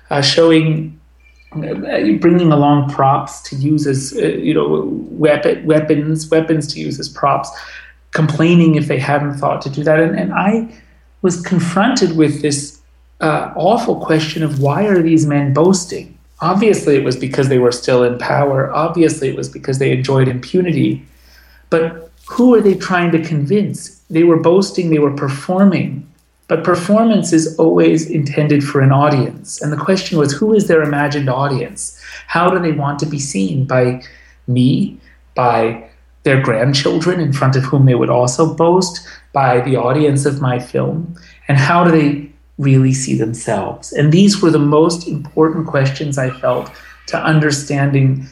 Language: English